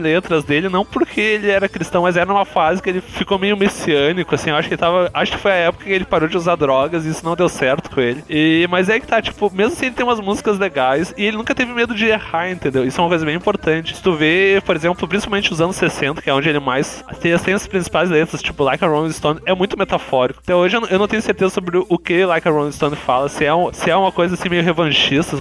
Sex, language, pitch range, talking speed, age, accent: male, Portuguese, 155-200 Hz, 280 wpm, 20-39, Brazilian